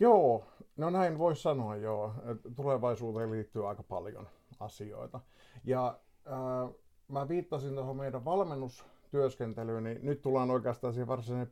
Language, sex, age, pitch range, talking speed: Finnish, male, 50-69, 105-130 Hz, 120 wpm